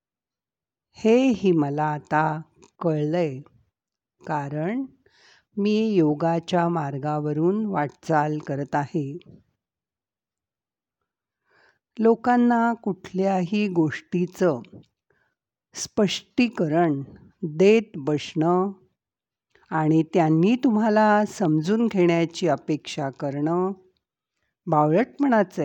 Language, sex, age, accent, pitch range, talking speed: Marathi, female, 50-69, native, 145-195 Hz, 60 wpm